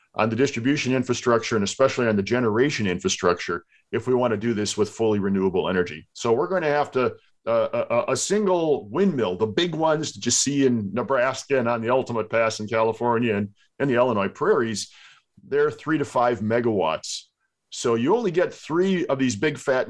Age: 40-59